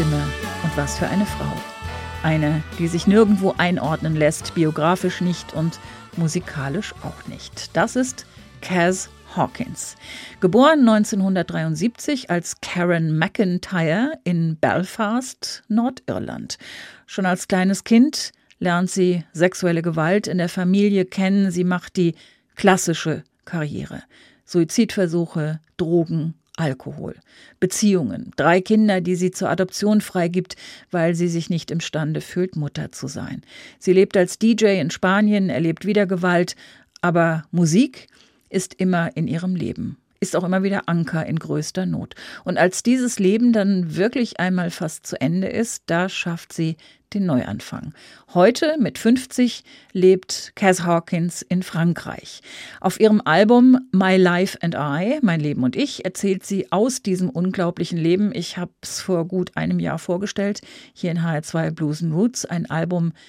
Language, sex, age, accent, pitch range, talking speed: German, female, 40-59, German, 165-200 Hz, 140 wpm